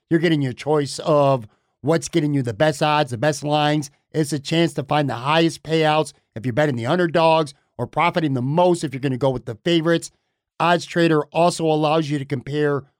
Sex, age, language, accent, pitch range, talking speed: male, 50-69, English, American, 140-170 Hz, 210 wpm